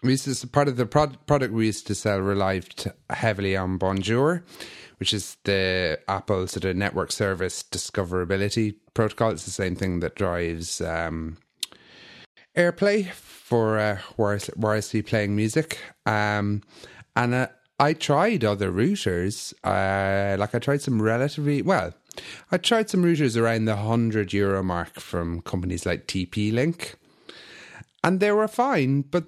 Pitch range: 100-140 Hz